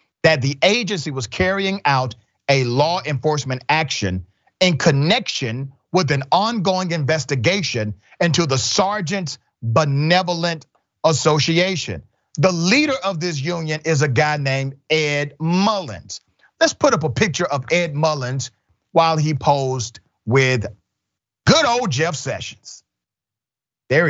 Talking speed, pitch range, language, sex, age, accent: 120 wpm, 125-175 Hz, English, male, 40-59, American